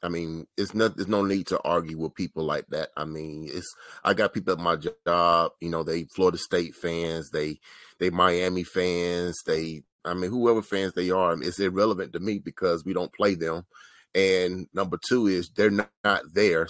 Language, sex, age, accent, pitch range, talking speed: English, male, 30-49, American, 85-105 Hz, 200 wpm